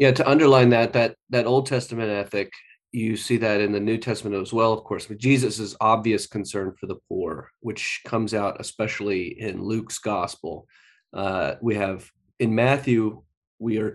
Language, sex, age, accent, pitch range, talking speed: English, male, 30-49, American, 100-120 Hz, 175 wpm